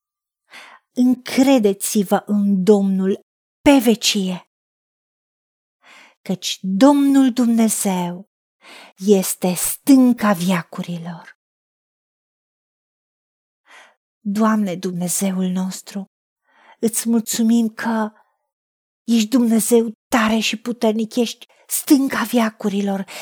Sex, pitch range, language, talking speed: female, 215-275 Hz, Romanian, 65 wpm